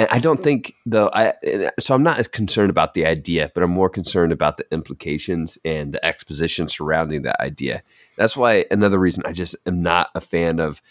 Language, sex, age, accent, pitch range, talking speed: English, male, 30-49, American, 80-100 Hz, 205 wpm